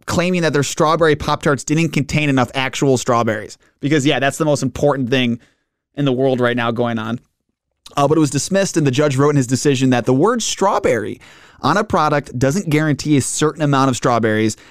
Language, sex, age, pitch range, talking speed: English, male, 30-49, 120-155 Hz, 205 wpm